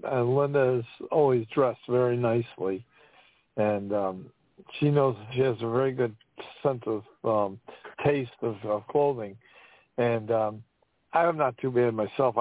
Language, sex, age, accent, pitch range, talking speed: English, male, 60-79, American, 120-145 Hz, 140 wpm